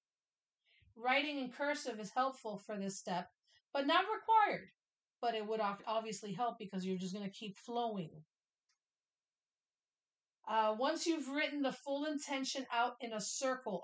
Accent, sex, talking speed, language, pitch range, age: American, female, 145 wpm, English, 205-255 Hz, 40-59